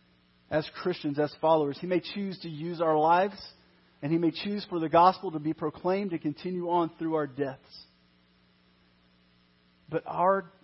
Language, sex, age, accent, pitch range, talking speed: English, male, 40-59, American, 110-170 Hz, 165 wpm